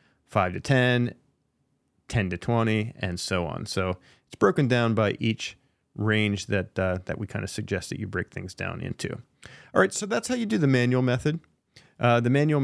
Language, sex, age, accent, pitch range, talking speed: English, male, 40-59, American, 100-130 Hz, 200 wpm